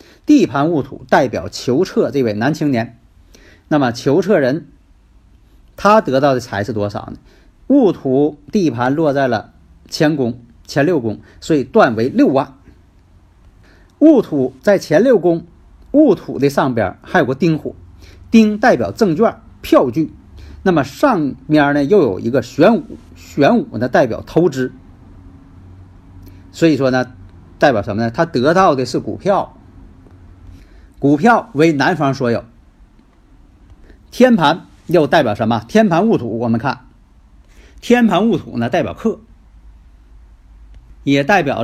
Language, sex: Chinese, male